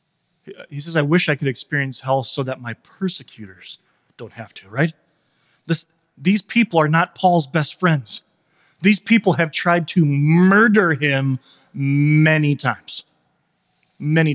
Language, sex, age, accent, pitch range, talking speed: English, male, 30-49, American, 145-180 Hz, 140 wpm